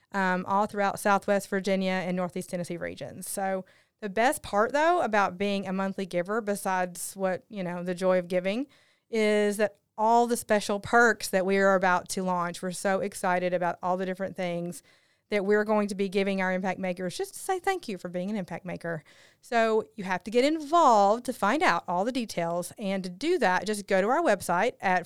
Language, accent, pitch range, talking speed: English, American, 185-225 Hz, 210 wpm